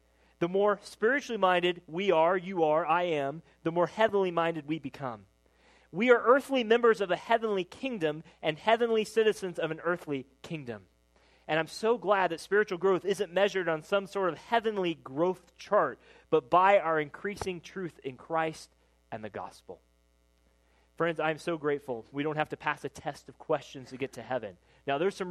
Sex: male